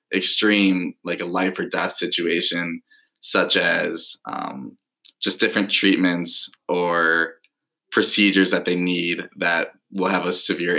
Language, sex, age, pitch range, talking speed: English, male, 10-29, 90-105 Hz, 130 wpm